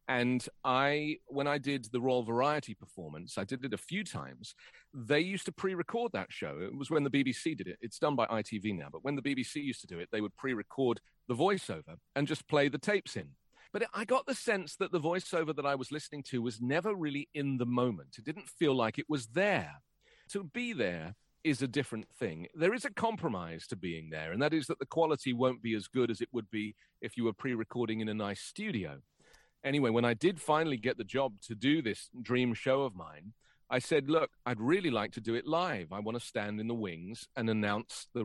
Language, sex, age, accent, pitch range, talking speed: English, male, 40-59, British, 110-150 Hz, 235 wpm